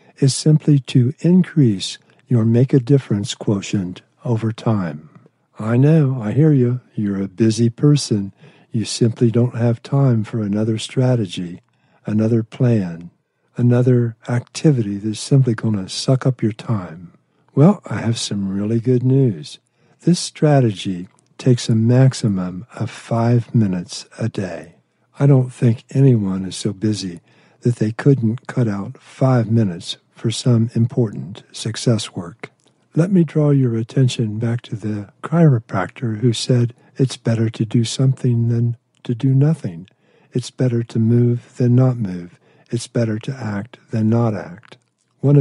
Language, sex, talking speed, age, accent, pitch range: English, male, 145 wpm, 60-79, American, 110-135 Hz